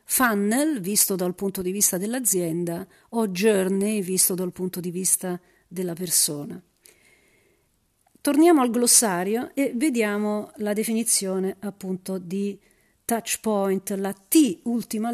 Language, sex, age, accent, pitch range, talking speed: Italian, female, 40-59, native, 185-240 Hz, 120 wpm